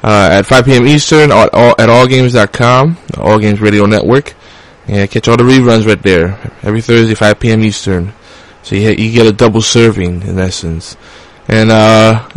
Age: 20-39